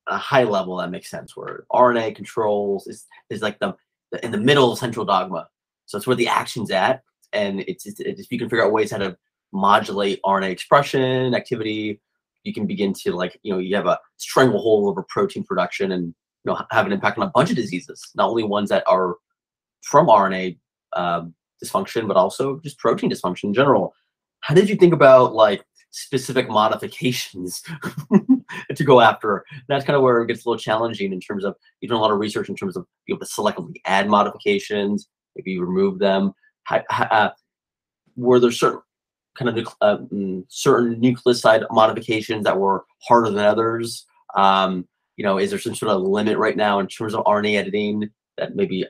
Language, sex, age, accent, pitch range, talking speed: English, male, 30-49, American, 100-130 Hz, 195 wpm